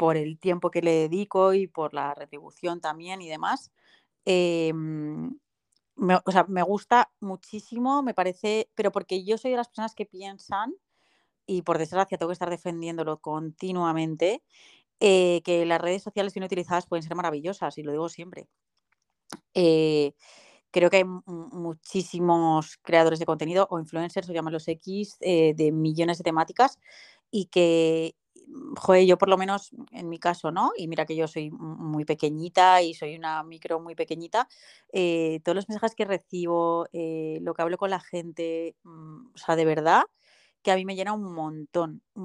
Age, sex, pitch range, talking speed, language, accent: 30-49, female, 160-195 Hz, 175 wpm, English, Spanish